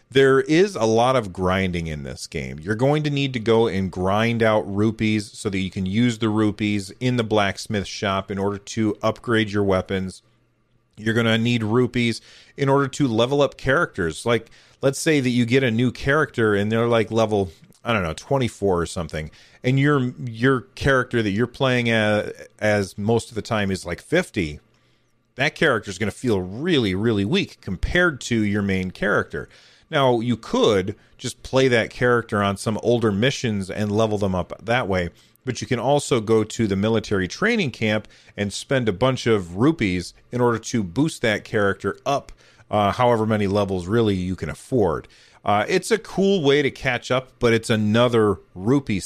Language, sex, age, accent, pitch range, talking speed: English, male, 30-49, American, 100-125 Hz, 190 wpm